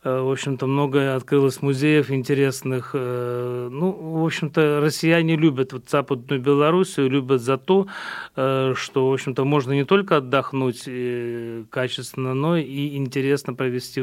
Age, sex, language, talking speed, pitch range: 30-49, male, Russian, 120 wpm, 130-145 Hz